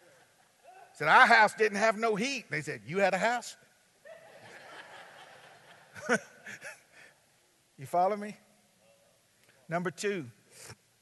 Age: 50-69